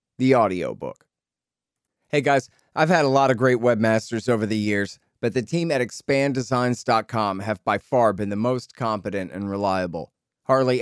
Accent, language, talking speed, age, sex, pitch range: American, English, 160 wpm, 40-59, male, 105-130 Hz